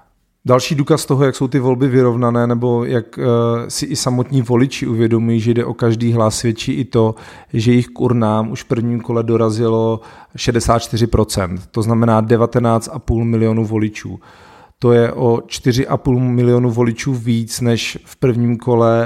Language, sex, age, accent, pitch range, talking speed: Czech, male, 40-59, native, 110-125 Hz, 155 wpm